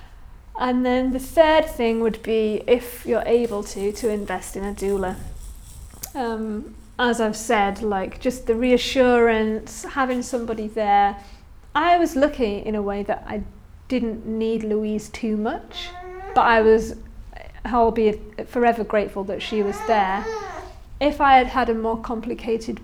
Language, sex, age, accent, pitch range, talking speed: English, female, 40-59, British, 215-255 Hz, 150 wpm